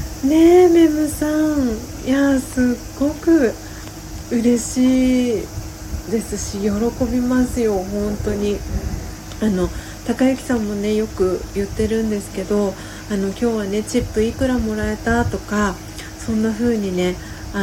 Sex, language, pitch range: female, Japanese, 180-230 Hz